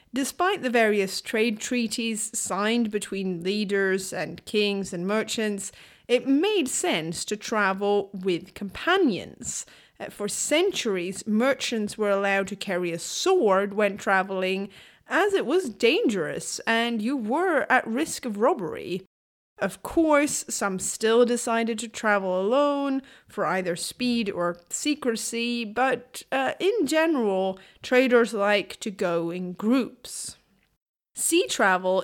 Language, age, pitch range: English, 30-49, 190-245 Hz